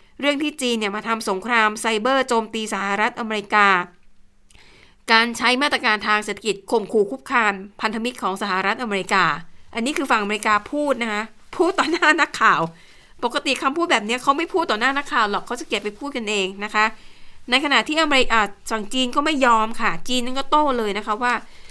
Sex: female